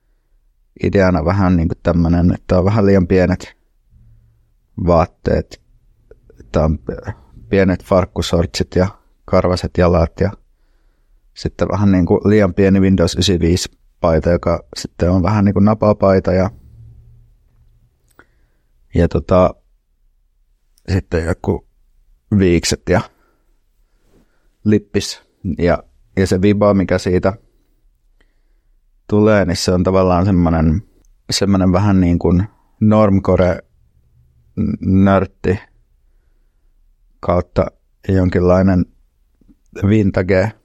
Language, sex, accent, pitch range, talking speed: Finnish, male, native, 85-100 Hz, 90 wpm